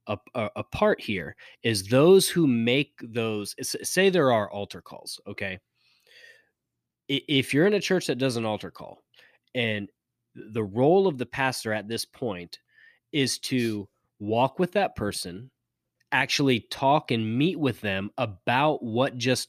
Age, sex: 20-39, male